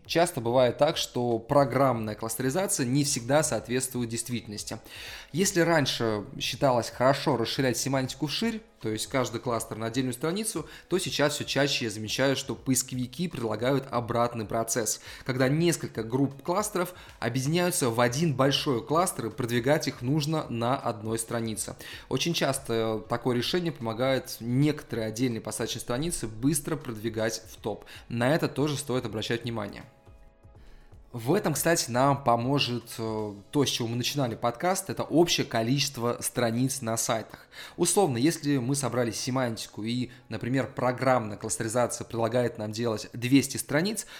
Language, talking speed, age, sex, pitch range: Russian, 135 wpm, 20-39, male, 115-145 Hz